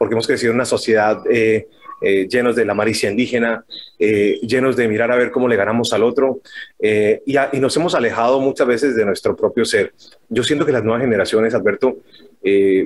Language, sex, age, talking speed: Spanish, male, 30-49, 210 wpm